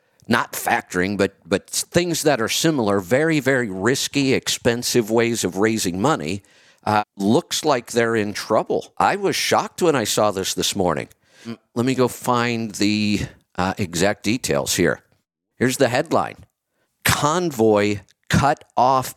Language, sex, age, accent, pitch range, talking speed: English, male, 50-69, American, 100-130 Hz, 145 wpm